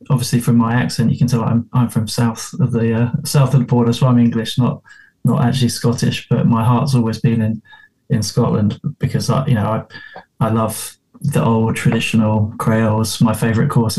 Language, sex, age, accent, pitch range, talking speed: English, male, 20-39, British, 115-135 Hz, 200 wpm